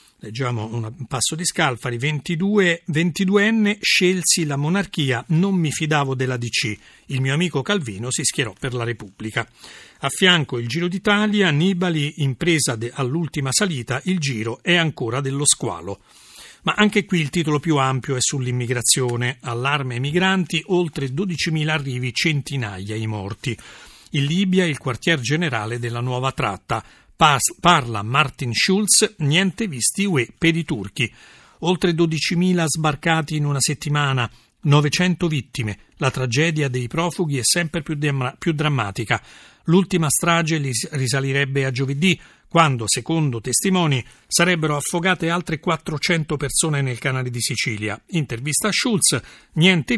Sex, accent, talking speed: male, native, 135 wpm